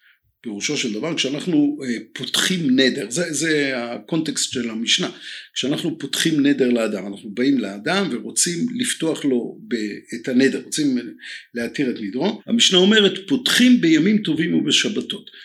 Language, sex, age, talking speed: Hebrew, male, 50-69, 130 wpm